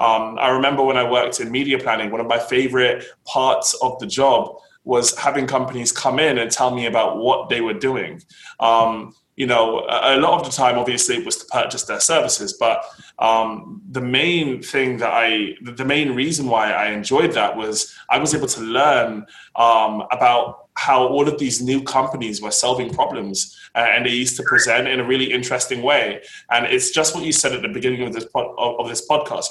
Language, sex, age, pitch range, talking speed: English, male, 20-39, 115-135 Hz, 205 wpm